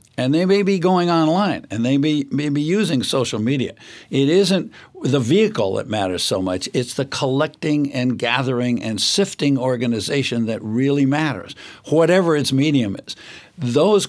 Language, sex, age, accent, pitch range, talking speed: English, male, 60-79, American, 125-150 Hz, 160 wpm